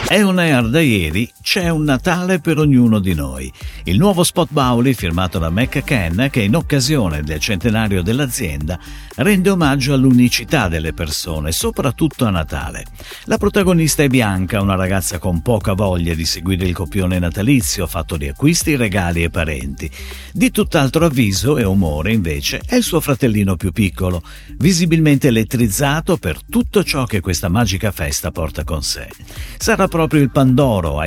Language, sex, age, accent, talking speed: Italian, male, 50-69, native, 160 wpm